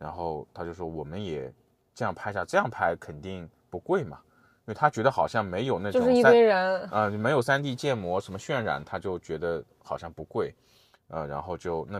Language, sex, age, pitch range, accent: Chinese, male, 20-39, 80-125 Hz, native